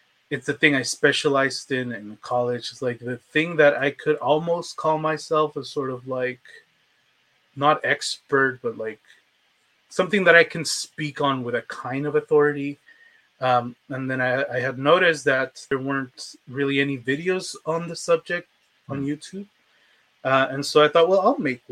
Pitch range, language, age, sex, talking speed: 125-155 Hz, English, 20-39, male, 175 wpm